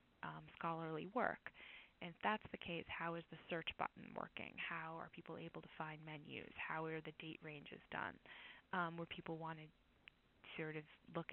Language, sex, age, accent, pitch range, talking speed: English, female, 20-39, American, 160-175 Hz, 185 wpm